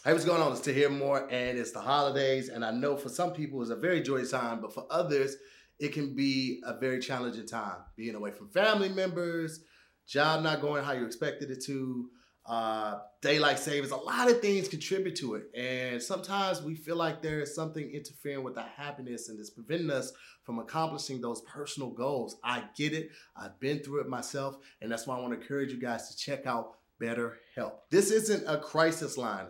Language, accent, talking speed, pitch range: English, American, 210 wpm, 130-165 Hz